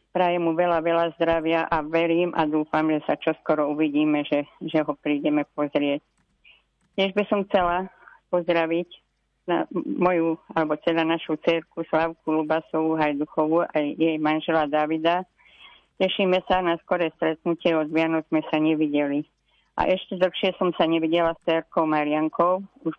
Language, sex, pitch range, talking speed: Slovak, female, 155-175 Hz, 145 wpm